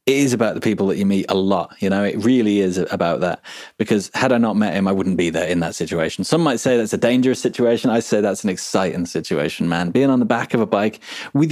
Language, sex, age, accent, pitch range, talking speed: English, male, 30-49, British, 100-145 Hz, 270 wpm